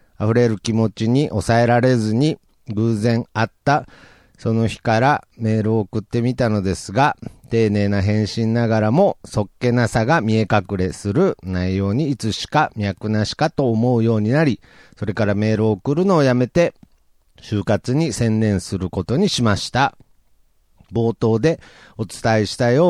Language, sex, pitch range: Japanese, male, 110-155 Hz